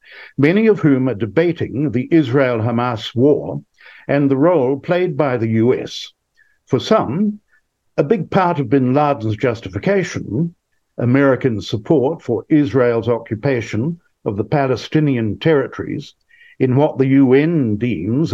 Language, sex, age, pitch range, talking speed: English, male, 60-79, 120-165 Hz, 125 wpm